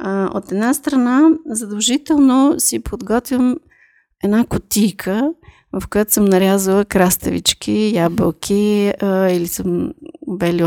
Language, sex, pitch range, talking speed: Bulgarian, female, 185-245 Hz, 105 wpm